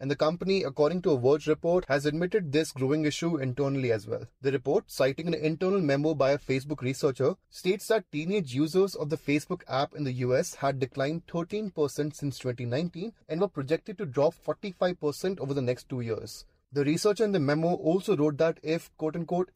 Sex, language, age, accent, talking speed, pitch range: male, English, 30-49, Indian, 195 wpm, 140-170 Hz